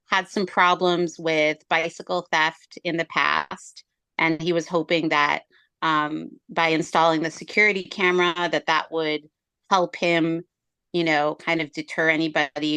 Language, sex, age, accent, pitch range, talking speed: English, female, 30-49, American, 155-180 Hz, 145 wpm